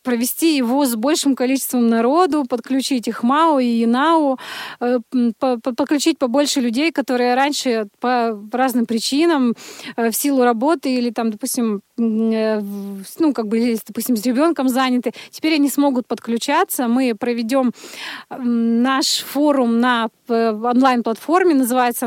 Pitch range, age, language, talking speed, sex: 235-285 Hz, 20-39, Russian, 115 wpm, female